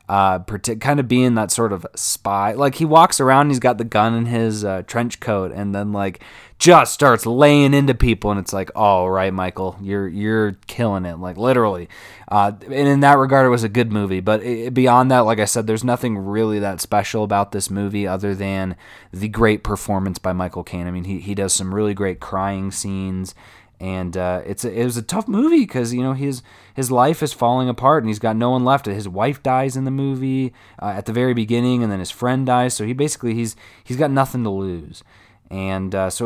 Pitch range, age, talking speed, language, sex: 100-125 Hz, 20-39, 220 wpm, English, male